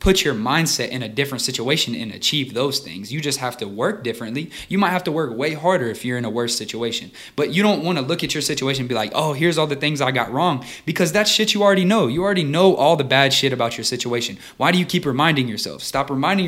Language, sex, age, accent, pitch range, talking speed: English, male, 20-39, American, 125-165 Hz, 270 wpm